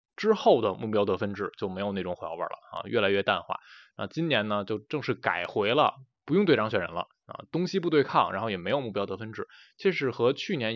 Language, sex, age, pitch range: Chinese, male, 20-39, 100-150 Hz